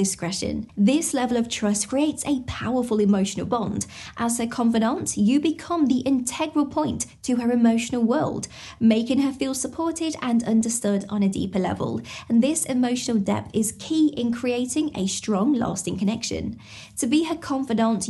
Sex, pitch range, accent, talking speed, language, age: female, 215-280 Hz, British, 160 wpm, English, 20-39